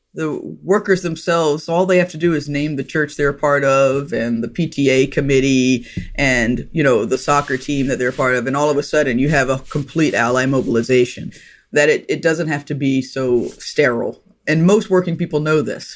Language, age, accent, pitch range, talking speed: English, 30-49, American, 130-155 Hz, 215 wpm